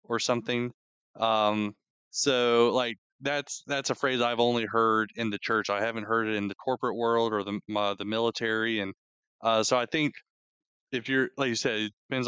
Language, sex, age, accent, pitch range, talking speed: English, male, 20-39, American, 110-125 Hz, 195 wpm